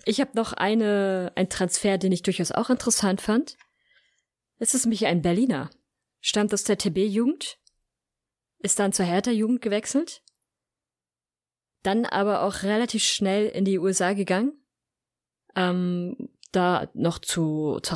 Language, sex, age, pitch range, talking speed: German, female, 20-39, 175-220 Hz, 135 wpm